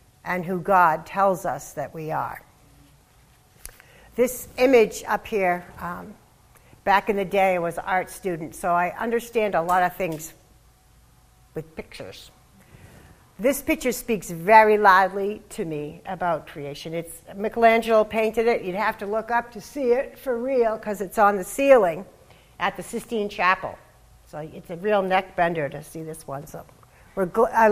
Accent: American